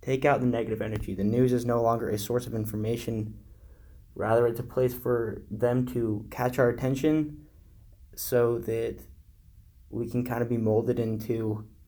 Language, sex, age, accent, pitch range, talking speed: English, male, 10-29, American, 100-120 Hz, 165 wpm